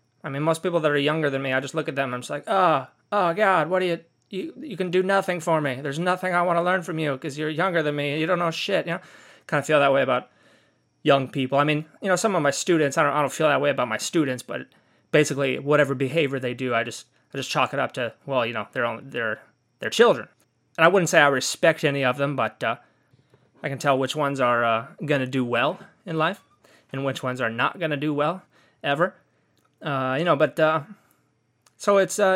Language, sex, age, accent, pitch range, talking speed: English, male, 20-39, American, 135-170 Hz, 260 wpm